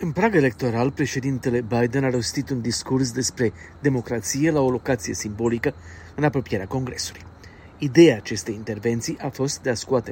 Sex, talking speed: male, 155 wpm